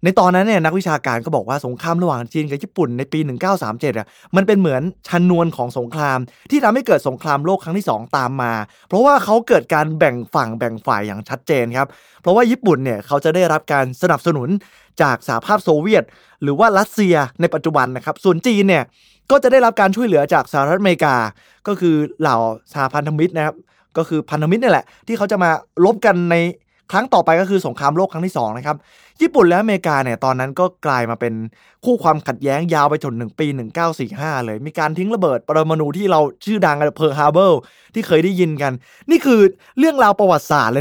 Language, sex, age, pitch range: Thai, male, 20-39, 135-190 Hz